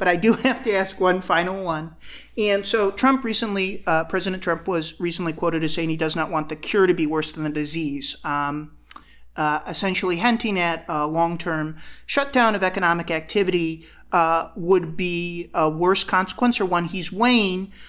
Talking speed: 180 wpm